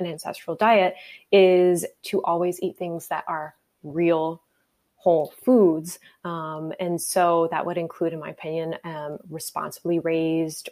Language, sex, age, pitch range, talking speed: English, female, 20-39, 165-190 Hz, 140 wpm